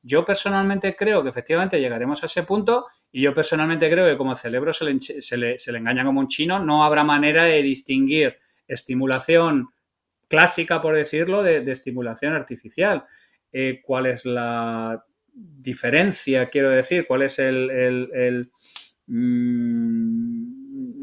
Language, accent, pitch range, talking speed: Spanish, Spanish, 135-175 Hz, 145 wpm